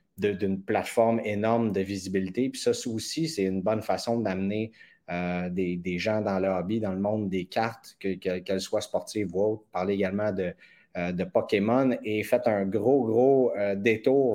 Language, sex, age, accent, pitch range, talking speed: French, male, 30-49, Canadian, 95-115 Hz, 200 wpm